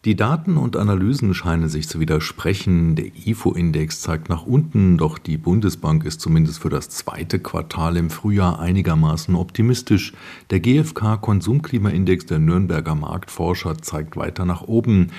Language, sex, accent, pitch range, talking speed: German, male, German, 80-100 Hz, 140 wpm